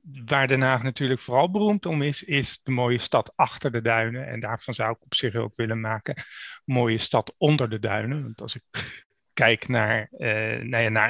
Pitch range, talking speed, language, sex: 110-135 Hz, 200 wpm, Dutch, male